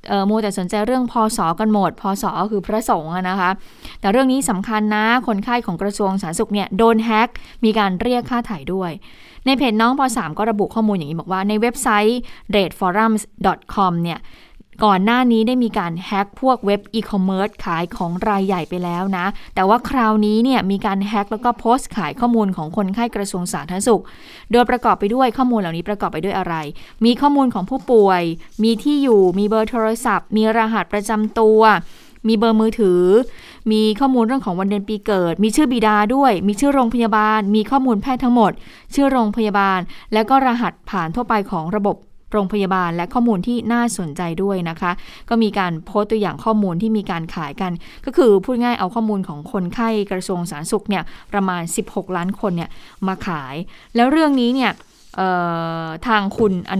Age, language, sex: 20-39, Thai, female